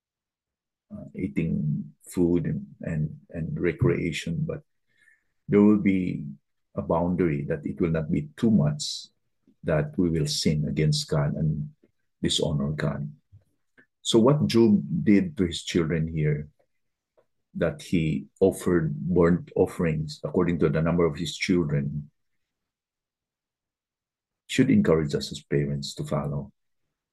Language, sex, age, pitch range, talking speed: English, male, 50-69, 75-115 Hz, 125 wpm